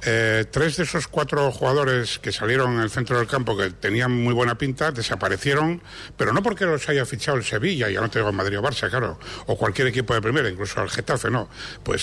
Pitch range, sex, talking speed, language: 115-150 Hz, male, 235 wpm, Spanish